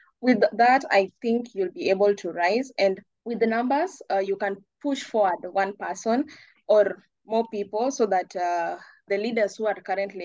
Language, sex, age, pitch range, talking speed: English, female, 20-39, 180-215 Hz, 180 wpm